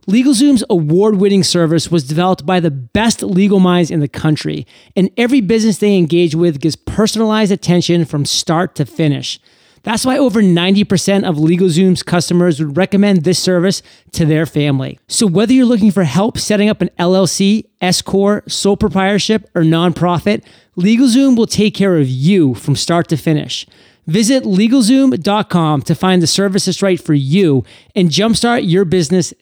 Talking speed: 160 wpm